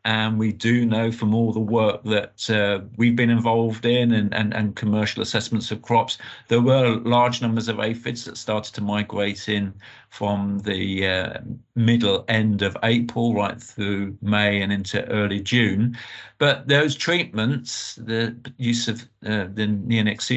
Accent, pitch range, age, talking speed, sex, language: British, 110-125 Hz, 50-69, 160 wpm, male, English